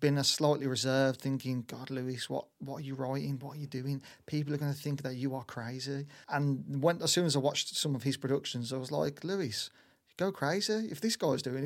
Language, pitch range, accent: English, 130-145 Hz, British